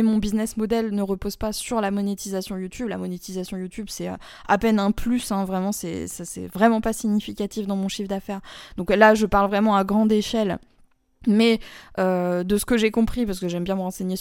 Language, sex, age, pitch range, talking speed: French, female, 20-39, 190-230 Hz, 205 wpm